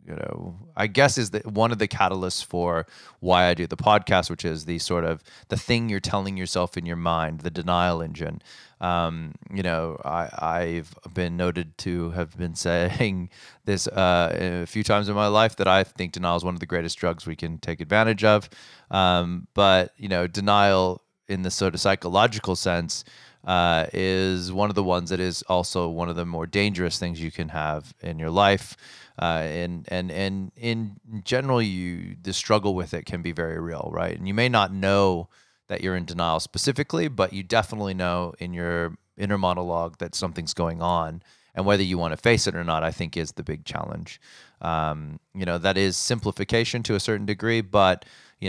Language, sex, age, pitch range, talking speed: English, male, 30-49, 85-100 Hz, 200 wpm